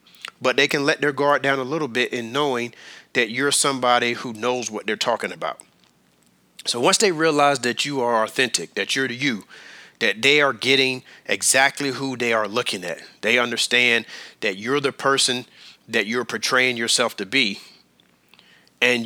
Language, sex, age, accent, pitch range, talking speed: English, male, 30-49, American, 115-135 Hz, 175 wpm